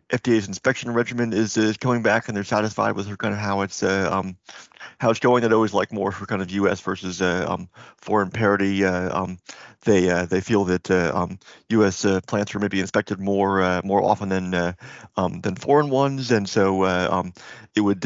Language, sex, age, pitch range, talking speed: English, male, 30-49, 95-115 Hz, 220 wpm